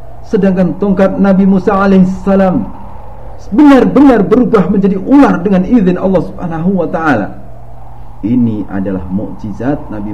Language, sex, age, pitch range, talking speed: Indonesian, male, 50-69, 115-185 Hz, 110 wpm